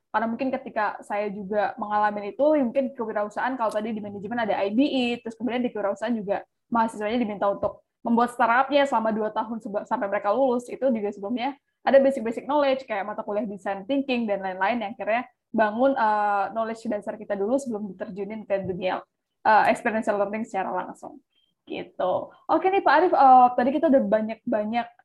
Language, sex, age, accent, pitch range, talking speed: Indonesian, female, 10-29, native, 210-265 Hz, 175 wpm